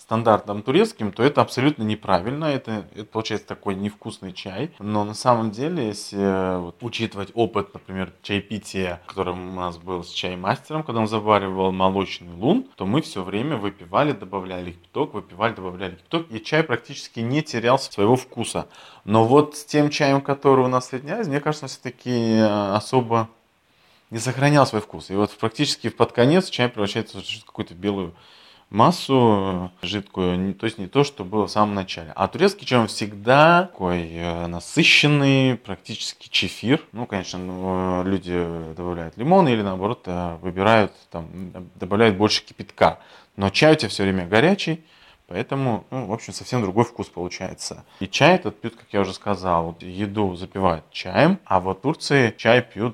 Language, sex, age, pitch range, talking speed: Russian, male, 20-39, 95-125 Hz, 160 wpm